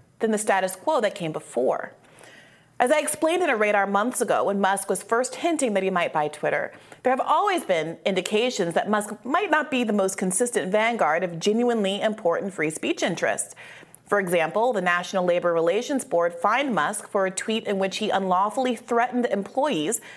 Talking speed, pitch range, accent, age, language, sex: 185 wpm, 185-255 Hz, American, 30-49, English, female